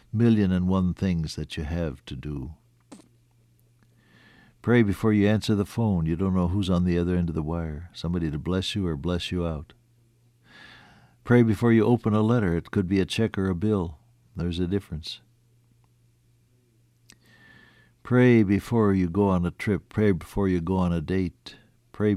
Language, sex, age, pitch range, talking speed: English, male, 60-79, 85-110 Hz, 180 wpm